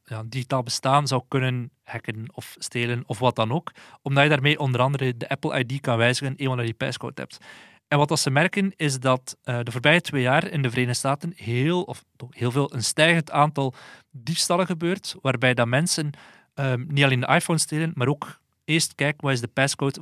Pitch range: 130-155 Hz